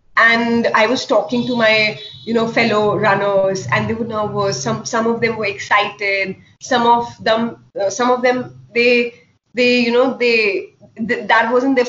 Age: 30-49